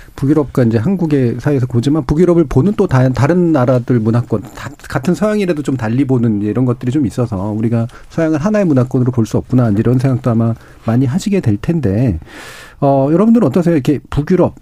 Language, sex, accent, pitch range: Korean, male, native, 115-170 Hz